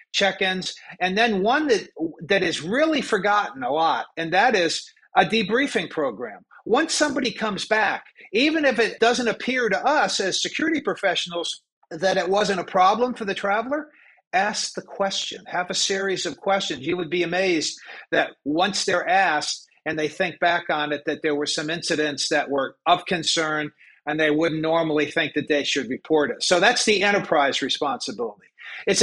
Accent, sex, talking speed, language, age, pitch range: American, male, 180 wpm, English, 50-69, 160-215 Hz